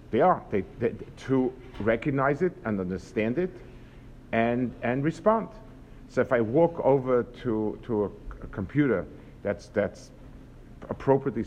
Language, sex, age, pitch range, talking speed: English, male, 50-69, 115-140 Hz, 135 wpm